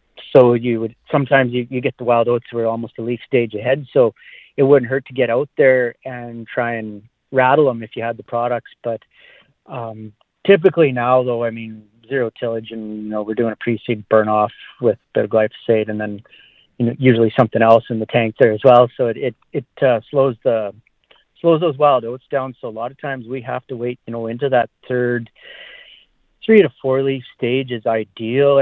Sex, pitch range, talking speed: male, 115-130 Hz, 210 wpm